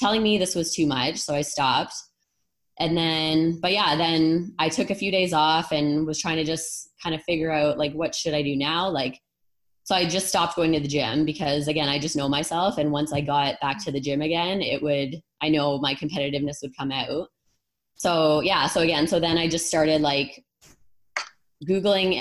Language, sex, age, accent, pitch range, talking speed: English, female, 20-39, American, 150-170 Hz, 215 wpm